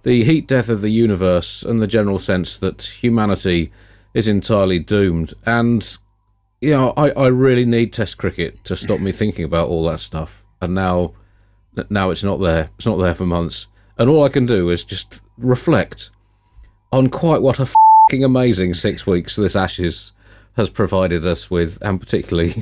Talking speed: 180 wpm